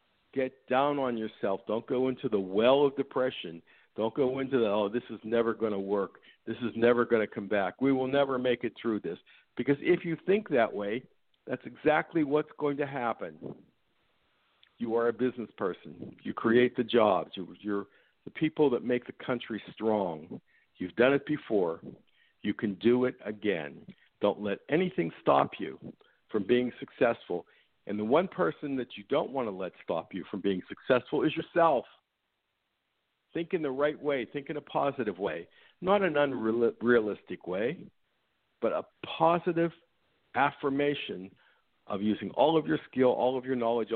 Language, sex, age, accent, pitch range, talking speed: English, male, 50-69, American, 110-145 Hz, 170 wpm